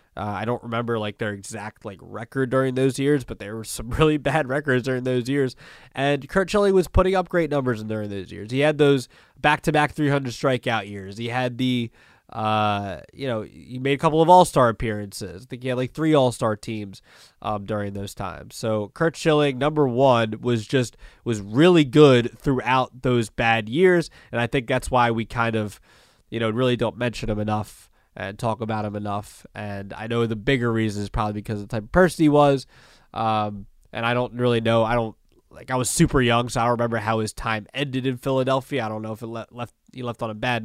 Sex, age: male, 20-39